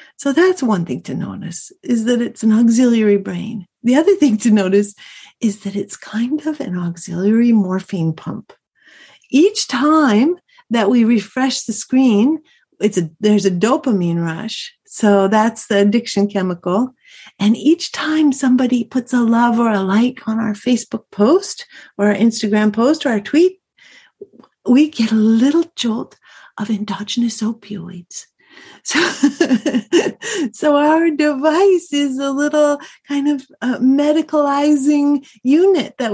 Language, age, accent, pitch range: English, 50-69, American, 215-290 Hz